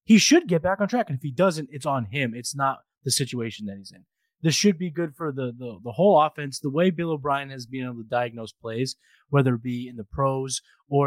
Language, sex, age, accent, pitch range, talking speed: English, male, 20-39, American, 130-180 Hz, 255 wpm